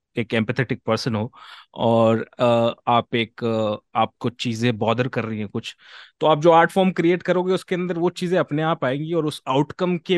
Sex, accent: male, Indian